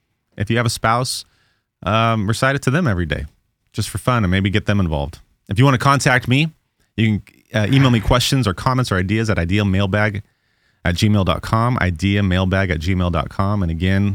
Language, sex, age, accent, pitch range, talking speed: English, male, 30-49, American, 95-120 Hz, 190 wpm